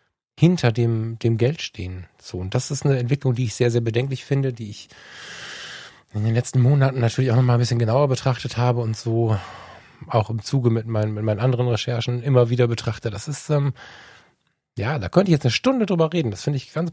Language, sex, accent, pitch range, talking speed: German, male, German, 110-140 Hz, 215 wpm